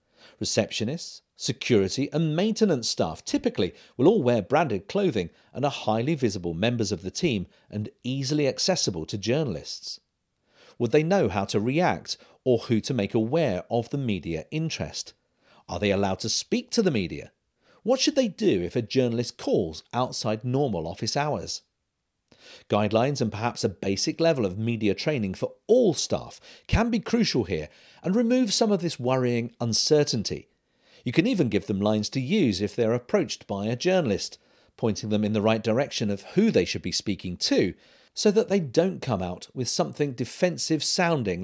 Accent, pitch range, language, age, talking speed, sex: British, 105-160 Hz, English, 40-59, 170 wpm, male